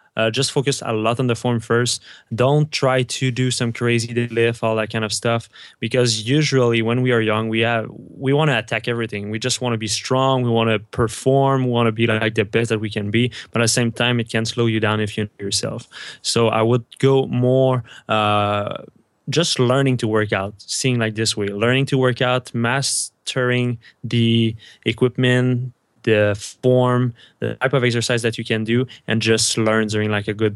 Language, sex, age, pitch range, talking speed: English, male, 20-39, 105-125 Hz, 210 wpm